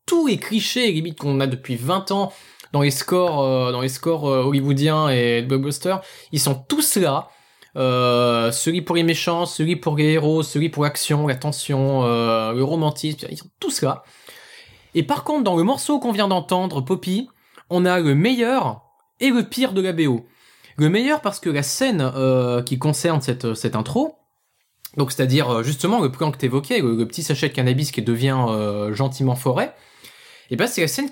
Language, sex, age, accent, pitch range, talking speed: French, male, 20-39, French, 135-205 Hz, 200 wpm